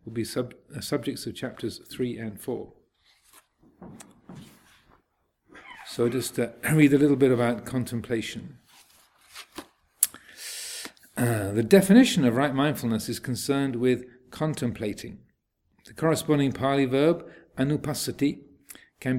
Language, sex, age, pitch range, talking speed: English, male, 50-69, 120-150 Hz, 105 wpm